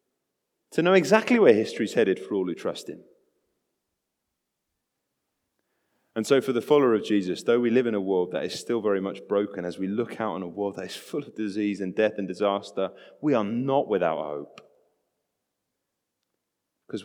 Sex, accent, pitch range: male, British, 100-145 Hz